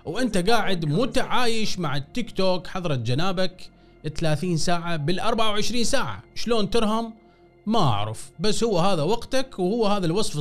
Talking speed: 135 wpm